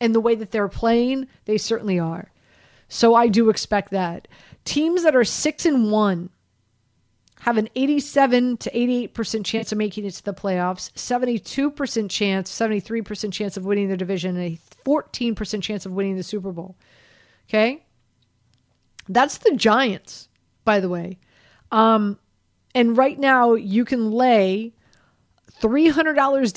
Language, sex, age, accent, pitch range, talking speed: English, female, 40-59, American, 195-245 Hz, 155 wpm